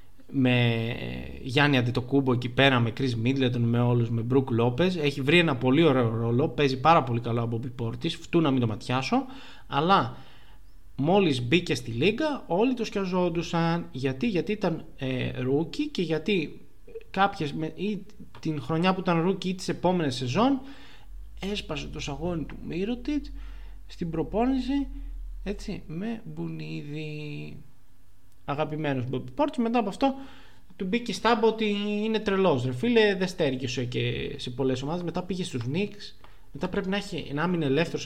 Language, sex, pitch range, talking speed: Greek, male, 125-185 Hz, 150 wpm